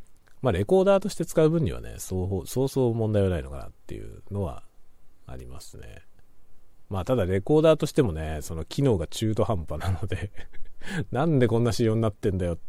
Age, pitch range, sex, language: 40-59, 80-110 Hz, male, Japanese